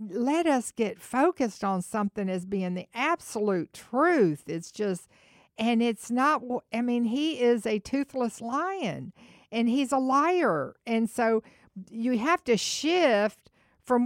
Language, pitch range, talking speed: English, 205-270 Hz, 145 wpm